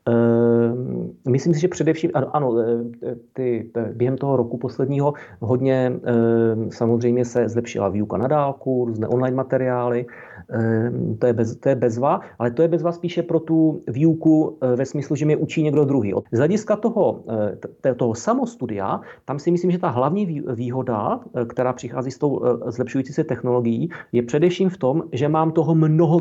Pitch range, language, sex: 125-155 Hz, Czech, male